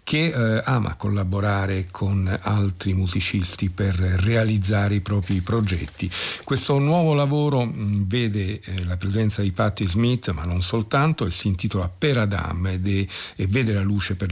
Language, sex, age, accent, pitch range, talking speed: Italian, male, 50-69, native, 95-110 Hz, 160 wpm